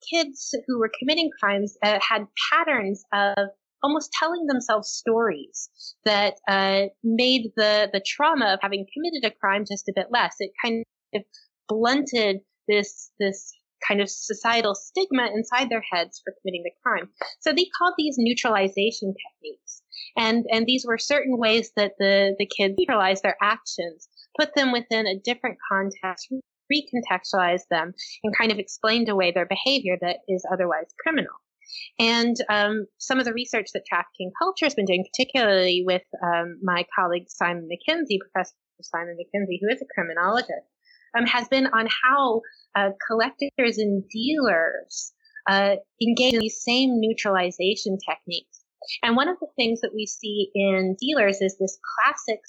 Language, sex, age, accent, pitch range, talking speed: English, female, 20-39, American, 195-255 Hz, 160 wpm